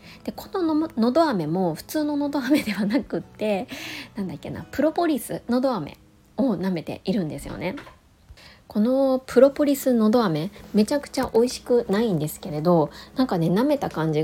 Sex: female